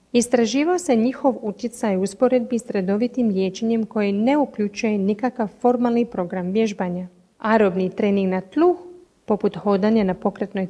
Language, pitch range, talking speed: Croatian, 195-245 Hz, 130 wpm